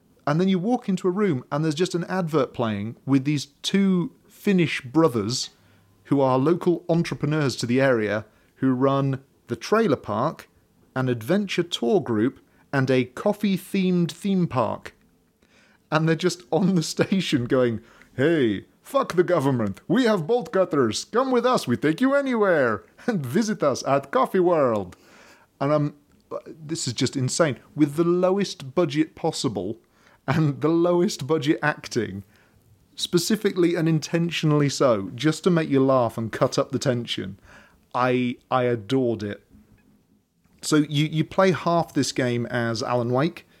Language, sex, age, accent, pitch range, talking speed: English, male, 30-49, British, 120-170 Hz, 155 wpm